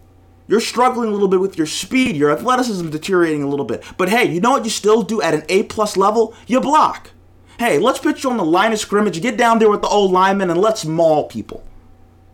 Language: English